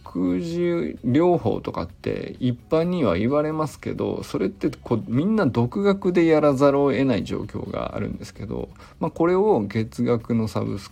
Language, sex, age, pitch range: Japanese, male, 50-69, 95-140 Hz